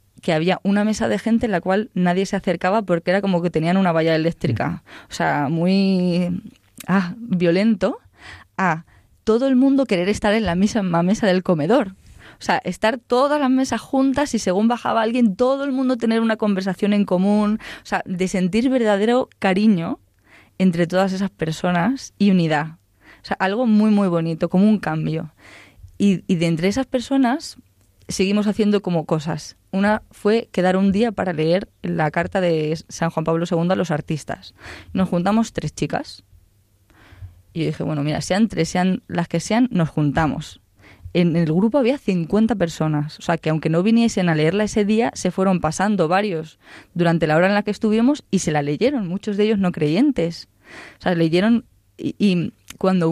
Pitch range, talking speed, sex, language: 165-215 Hz, 185 wpm, female, Spanish